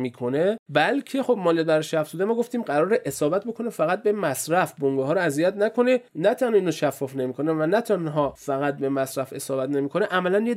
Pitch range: 125-180 Hz